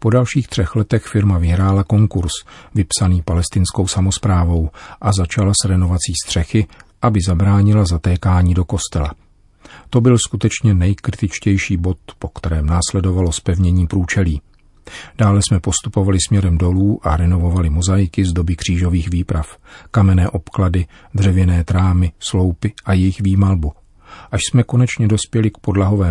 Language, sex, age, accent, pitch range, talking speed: Czech, male, 40-59, native, 90-100 Hz, 130 wpm